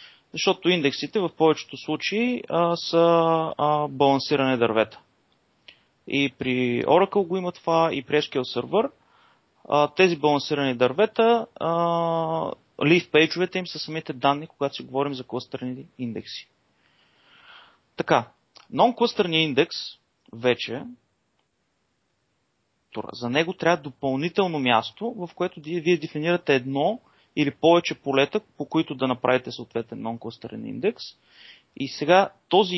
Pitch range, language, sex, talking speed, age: 130-175 Hz, Bulgarian, male, 110 wpm, 30-49